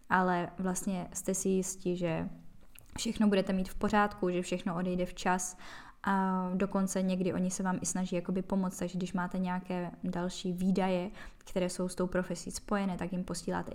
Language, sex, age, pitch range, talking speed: Czech, female, 10-29, 175-195 Hz, 175 wpm